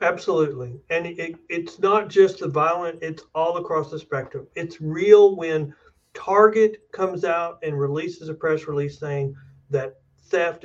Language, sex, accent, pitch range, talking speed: English, male, American, 140-175 Hz, 145 wpm